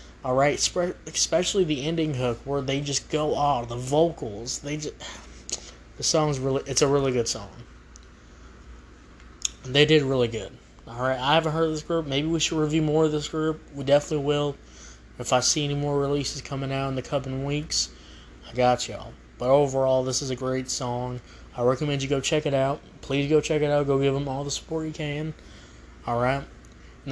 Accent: American